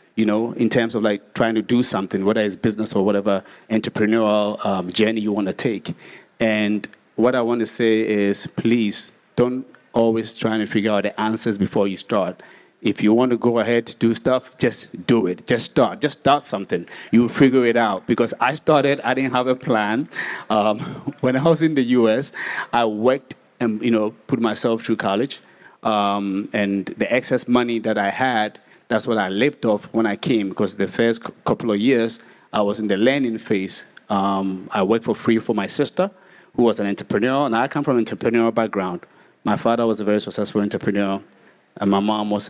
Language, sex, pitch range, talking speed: English, male, 105-120 Hz, 205 wpm